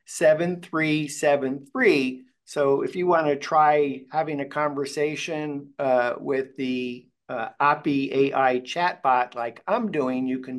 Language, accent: English, American